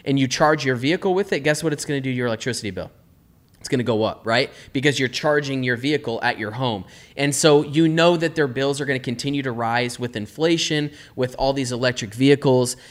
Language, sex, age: English, male, 20-39